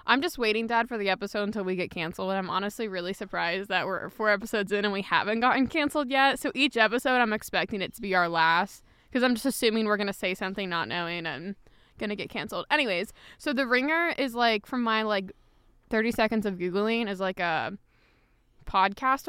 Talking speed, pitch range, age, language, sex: 220 wpm, 195-240 Hz, 20-39, English, female